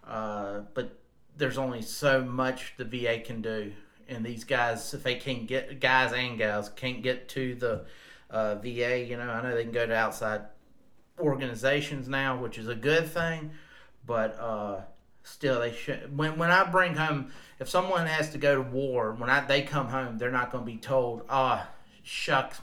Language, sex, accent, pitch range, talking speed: English, male, American, 115-145 Hz, 195 wpm